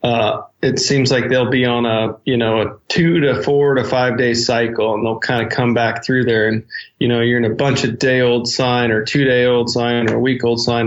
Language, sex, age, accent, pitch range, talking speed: English, male, 20-39, American, 115-130 Hz, 260 wpm